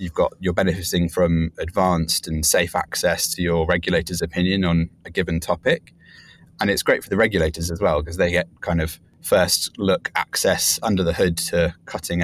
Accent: British